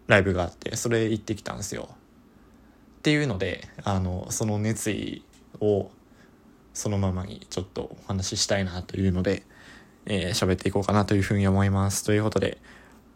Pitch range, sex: 95-120 Hz, male